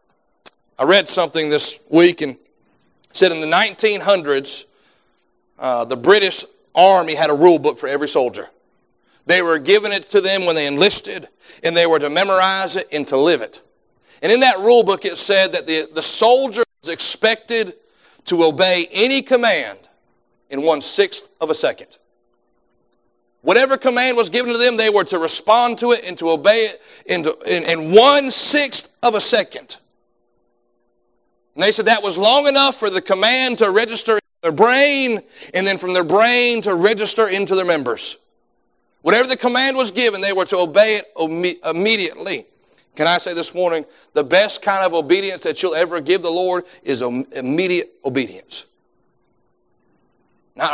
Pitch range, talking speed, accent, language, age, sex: 170-240 Hz, 165 wpm, American, English, 40-59, male